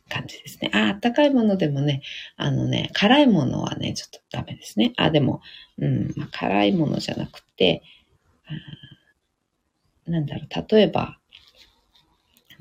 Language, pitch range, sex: Japanese, 135-220 Hz, female